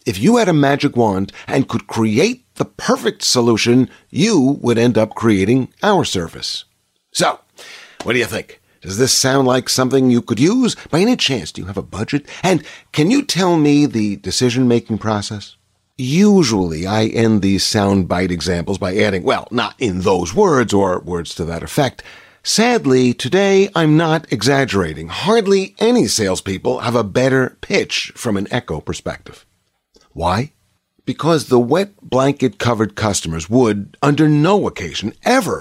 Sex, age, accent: male, 50-69, American